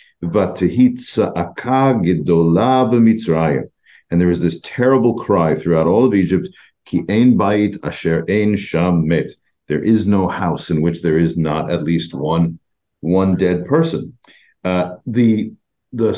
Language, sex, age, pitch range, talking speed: English, male, 50-69, 90-125 Hz, 105 wpm